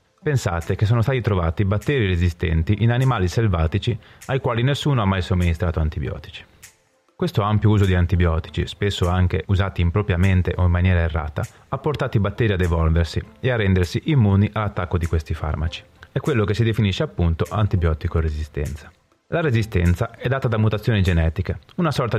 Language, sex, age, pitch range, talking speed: Italian, male, 30-49, 90-110 Hz, 165 wpm